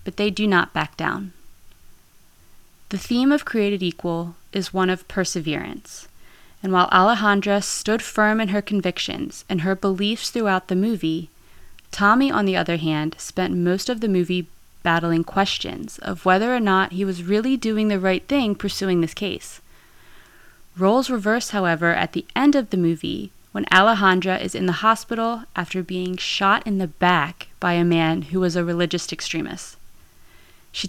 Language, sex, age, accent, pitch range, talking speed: English, female, 20-39, American, 170-205 Hz, 165 wpm